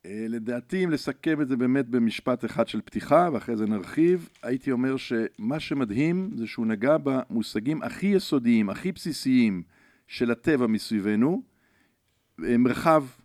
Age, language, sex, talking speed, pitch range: 50-69, Hebrew, male, 130 wpm, 115-170 Hz